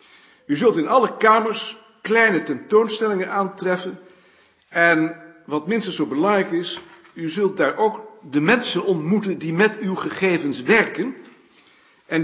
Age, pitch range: 60-79, 160-220 Hz